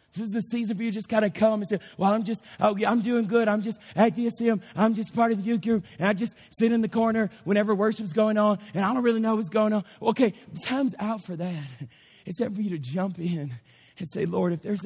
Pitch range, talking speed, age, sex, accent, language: 150-195 Hz, 265 wpm, 40-59, male, American, English